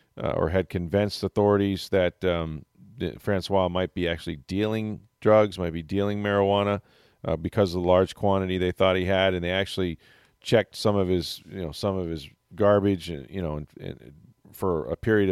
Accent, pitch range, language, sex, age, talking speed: American, 90-100 Hz, English, male, 40-59, 190 wpm